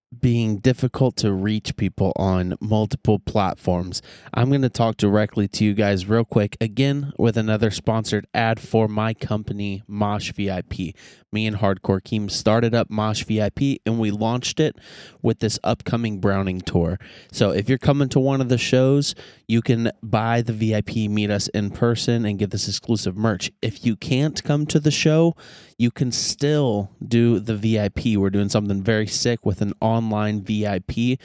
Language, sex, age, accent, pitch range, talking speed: English, male, 20-39, American, 105-125 Hz, 175 wpm